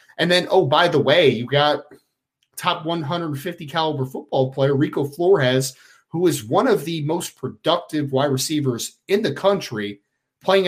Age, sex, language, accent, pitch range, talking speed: 30-49, male, English, American, 130-175 Hz, 150 wpm